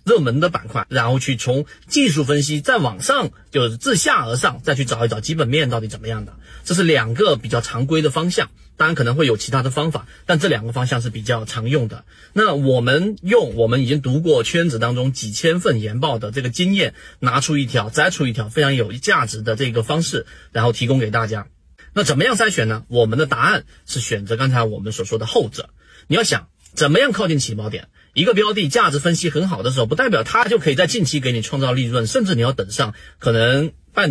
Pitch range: 115-155 Hz